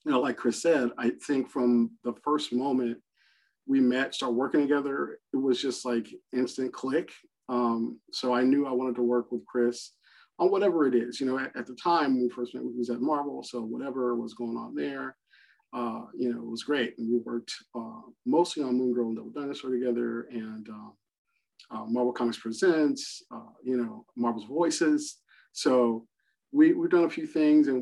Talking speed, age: 200 wpm, 50-69